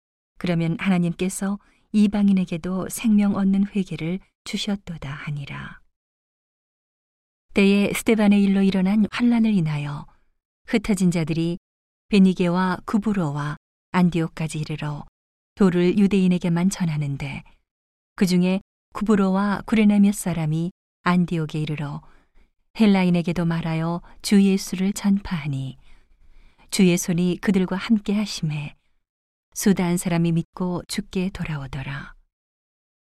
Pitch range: 155-200 Hz